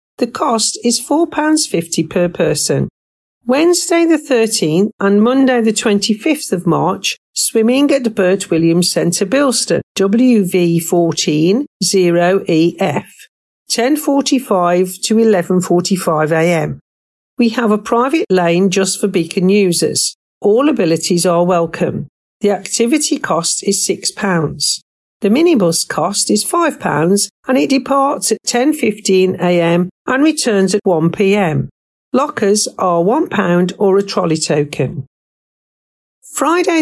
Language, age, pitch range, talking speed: English, 50-69, 170-235 Hz, 115 wpm